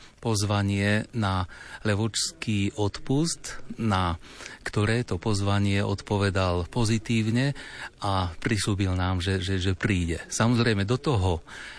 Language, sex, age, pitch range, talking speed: Slovak, male, 30-49, 95-110 Hz, 100 wpm